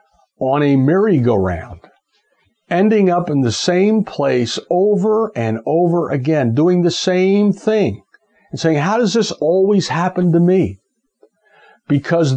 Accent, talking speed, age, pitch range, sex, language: American, 130 wpm, 50-69, 110-170 Hz, male, English